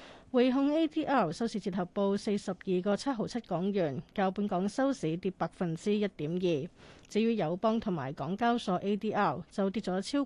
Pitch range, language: 185-225 Hz, Chinese